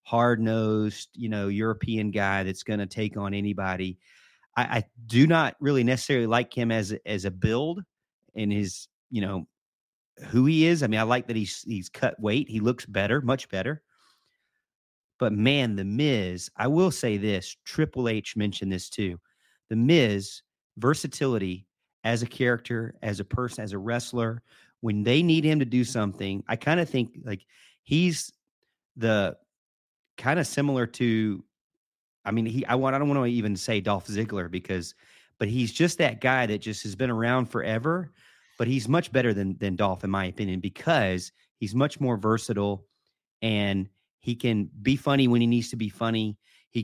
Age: 40-59